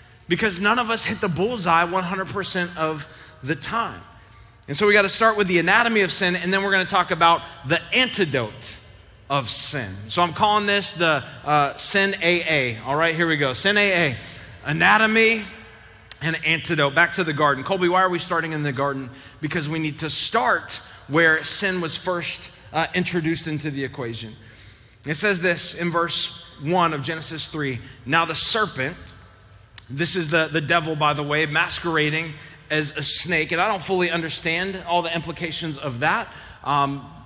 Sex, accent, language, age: male, American, English, 30-49